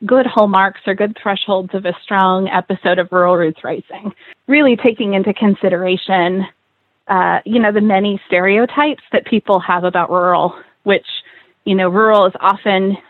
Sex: female